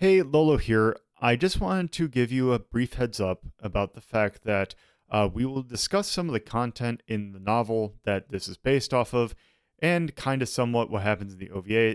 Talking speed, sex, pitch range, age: 215 wpm, male, 95-125 Hz, 30-49